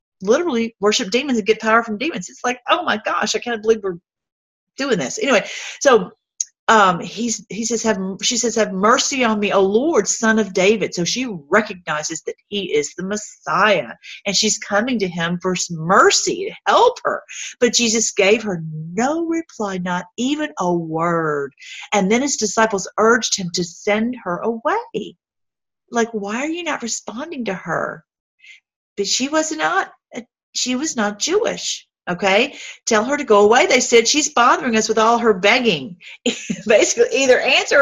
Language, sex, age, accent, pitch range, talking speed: English, female, 40-59, American, 195-255 Hz, 175 wpm